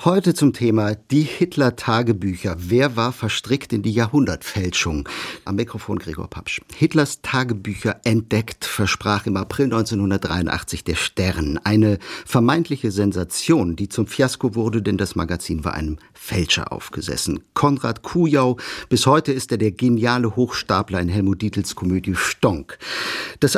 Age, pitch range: 50-69, 95-125 Hz